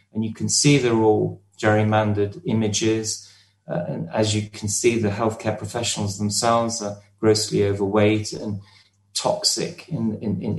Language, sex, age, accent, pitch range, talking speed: English, male, 30-49, British, 105-125 Hz, 140 wpm